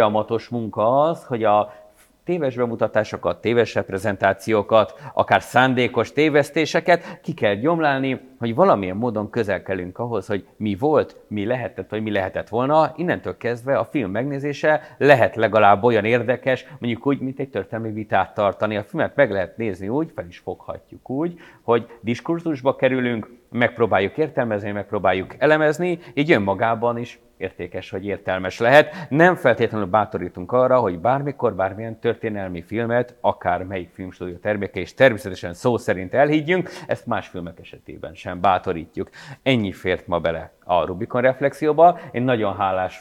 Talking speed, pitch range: 145 wpm, 100-135 Hz